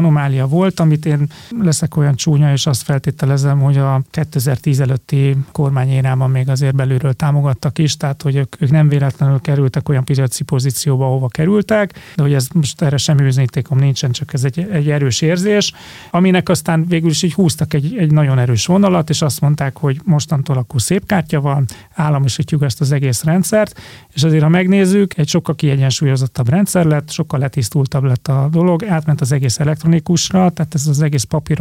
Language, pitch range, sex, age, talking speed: Hungarian, 140-160 Hz, male, 30-49, 175 wpm